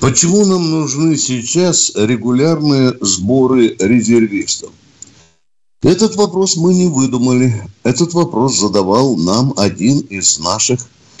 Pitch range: 105-145 Hz